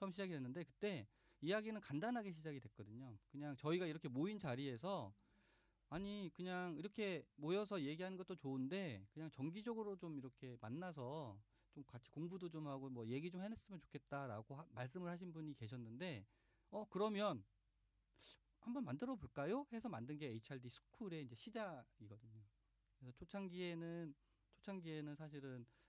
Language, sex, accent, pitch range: Korean, male, native, 120-180 Hz